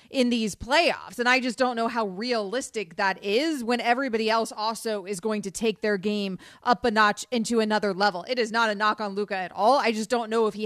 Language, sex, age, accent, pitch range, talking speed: English, female, 30-49, American, 215-265 Hz, 240 wpm